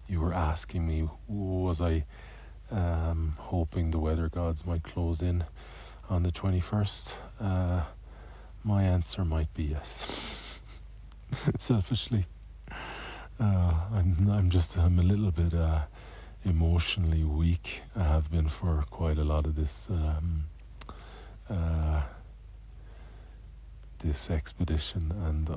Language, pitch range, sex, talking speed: English, 75-90 Hz, male, 115 wpm